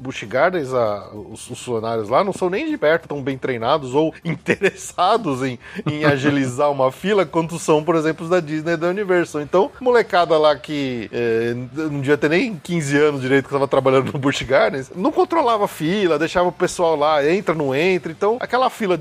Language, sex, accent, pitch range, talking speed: Portuguese, male, Brazilian, 135-185 Hz, 195 wpm